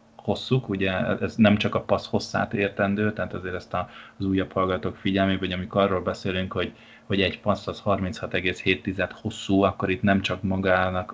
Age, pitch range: 20-39, 90-105 Hz